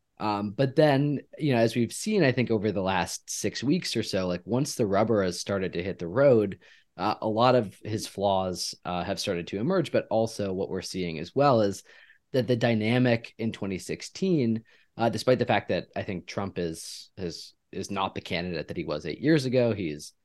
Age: 20-39